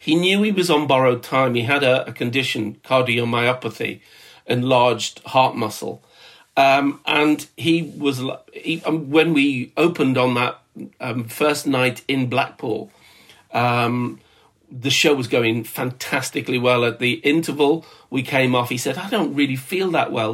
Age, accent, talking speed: 40-59, British, 150 wpm